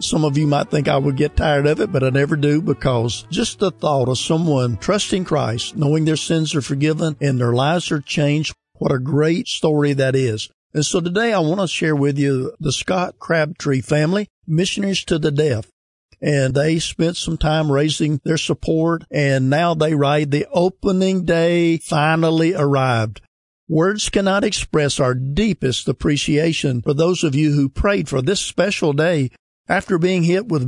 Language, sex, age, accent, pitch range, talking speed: English, male, 50-69, American, 140-170 Hz, 180 wpm